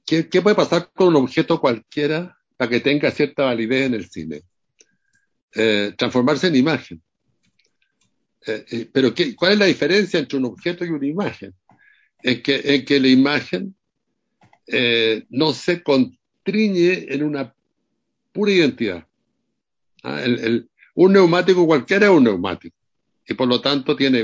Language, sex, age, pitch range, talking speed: Spanish, male, 60-79, 115-160 Hz, 155 wpm